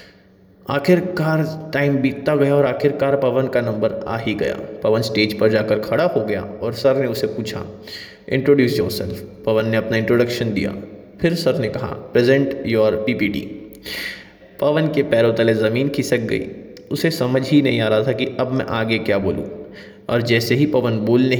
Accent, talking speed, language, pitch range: Indian, 175 wpm, English, 110-140 Hz